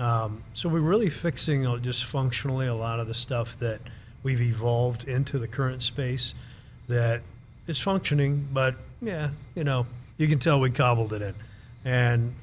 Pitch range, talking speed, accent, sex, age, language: 120-135 Hz, 165 wpm, American, male, 50-69, English